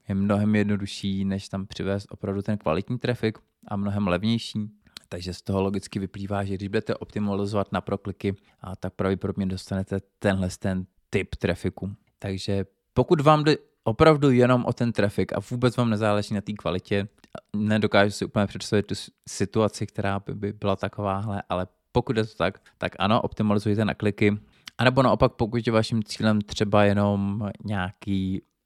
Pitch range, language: 100-110 Hz, Czech